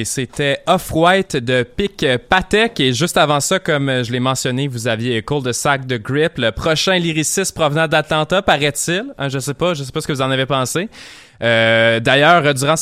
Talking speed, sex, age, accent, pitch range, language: 190 wpm, male, 20-39, Canadian, 130-170 Hz, French